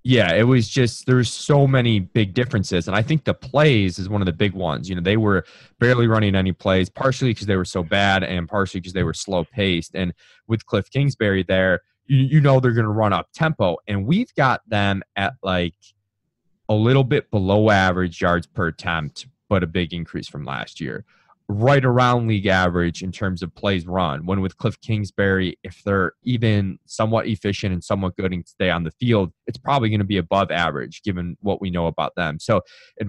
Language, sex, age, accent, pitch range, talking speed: English, male, 20-39, American, 90-110 Hz, 210 wpm